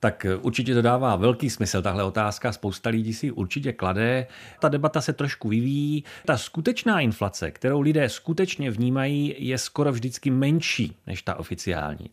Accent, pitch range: native, 110-150 Hz